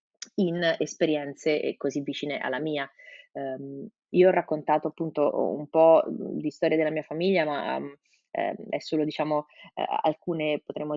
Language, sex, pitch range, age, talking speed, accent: Italian, female, 150-170 Hz, 20-39, 150 wpm, native